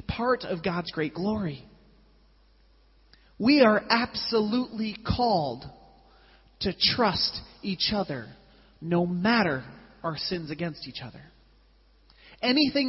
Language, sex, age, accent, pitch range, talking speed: English, male, 30-49, American, 150-205 Hz, 100 wpm